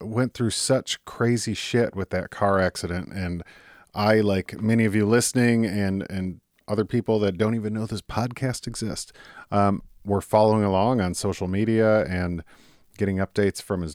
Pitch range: 90-115 Hz